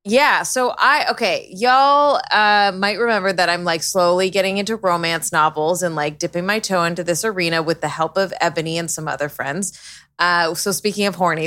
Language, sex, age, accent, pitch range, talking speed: English, female, 20-39, American, 170-230 Hz, 200 wpm